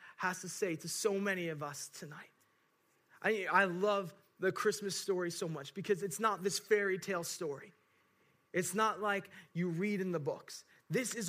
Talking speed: 180 wpm